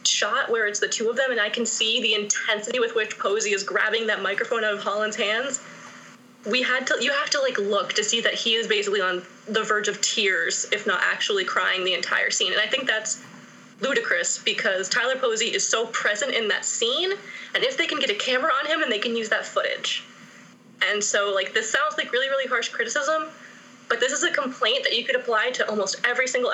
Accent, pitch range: American, 215-325 Hz